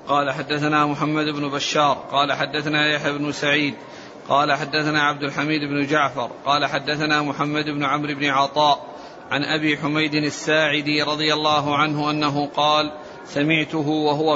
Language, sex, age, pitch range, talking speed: Arabic, male, 40-59, 150-160 Hz, 140 wpm